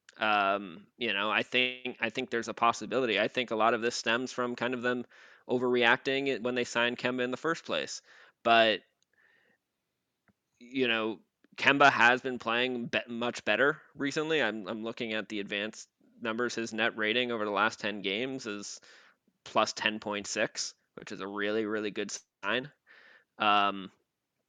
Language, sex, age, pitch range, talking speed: English, male, 20-39, 110-125 Hz, 160 wpm